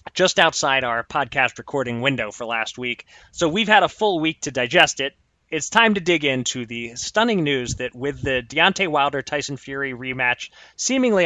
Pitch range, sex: 130-160 Hz, male